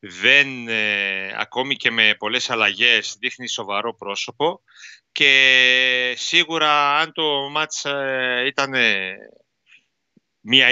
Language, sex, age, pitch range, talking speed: Greek, male, 30-49, 110-140 Hz, 90 wpm